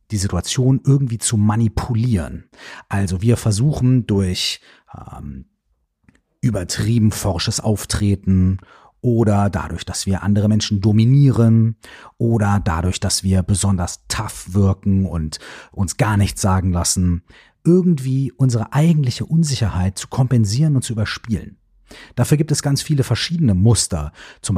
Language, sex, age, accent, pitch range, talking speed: German, male, 40-59, German, 95-120 Hz, 120 wpm